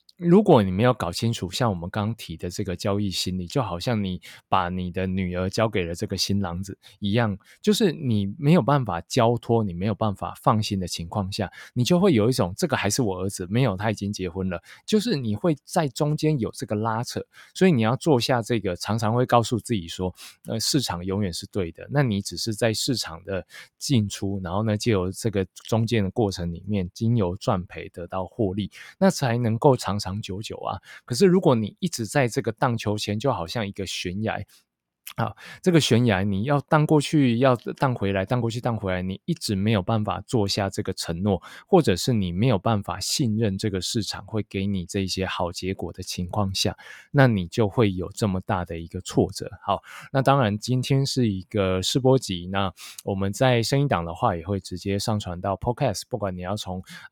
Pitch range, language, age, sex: 95-125 Hz, Chinese, 20-39, male